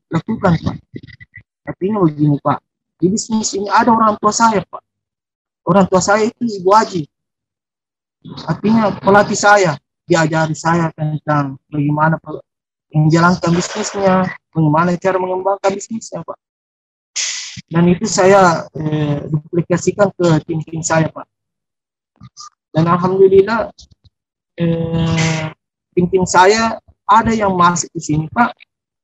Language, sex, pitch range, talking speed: Indonesian, male, 160-210 Hz, 110 wpm